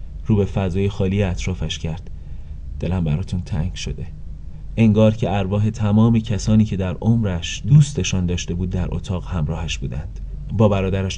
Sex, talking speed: male, 145 wpm